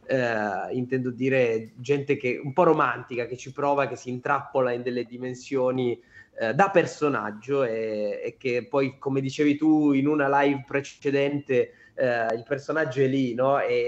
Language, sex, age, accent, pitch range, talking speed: Italian, male, 20-39, native, 120-145 Hz, 150 wpm